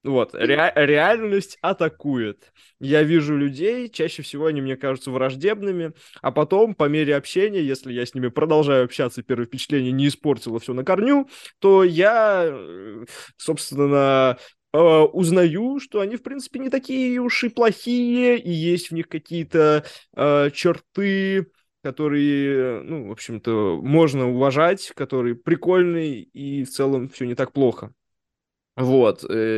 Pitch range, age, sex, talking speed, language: 120-165 Hz, 20-39, male, 135 wpm, Russian